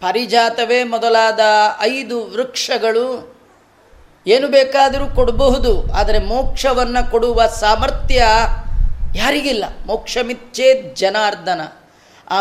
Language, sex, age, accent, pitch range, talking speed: Kannada, female, 30-49, native, 215-255 Hz, 75 wpm